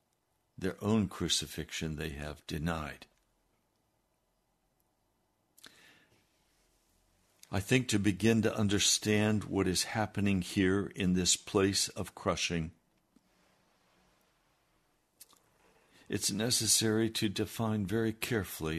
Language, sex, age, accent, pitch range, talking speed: English, male, 60-79, American, 90-115 Hz, 85 wpm